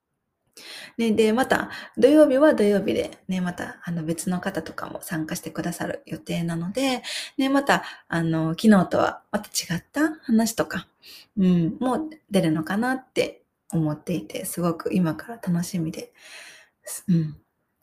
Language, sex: Japanese, female